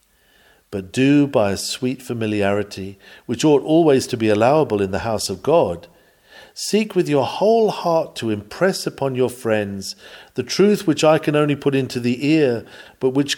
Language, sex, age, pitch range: English, male, 50-69, 110-165 Hz